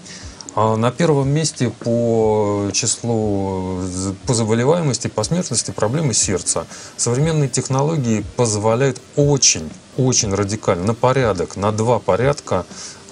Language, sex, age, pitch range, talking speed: Russian, male, 30-49, 100-125 Hz, 100 wpm